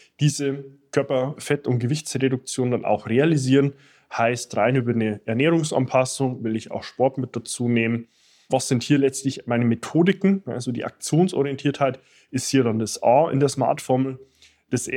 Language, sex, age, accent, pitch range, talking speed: German, male, 20-39, German, 120-145 Hz, 150 wpm